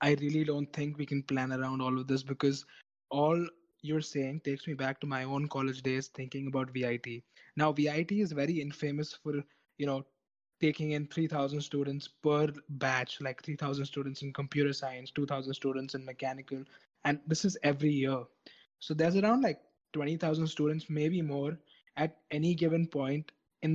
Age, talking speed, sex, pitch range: 20-39, 170 wpm, male, 140-165 Hz